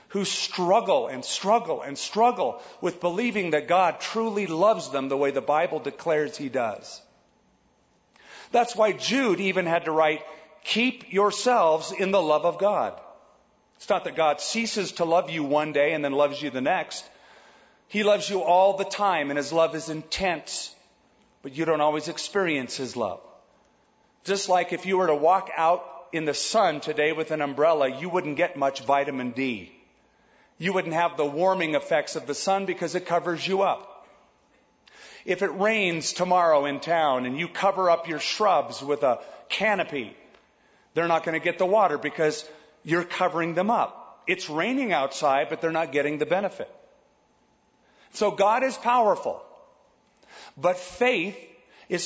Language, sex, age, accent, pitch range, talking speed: English, male, 40-59, American, 150-200 Hz, 170 wpm